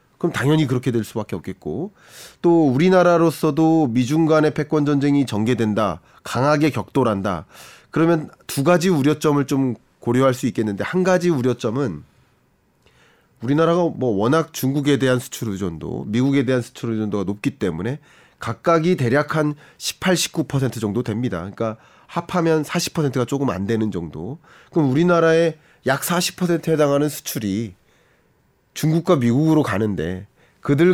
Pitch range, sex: 120-165 Hz, male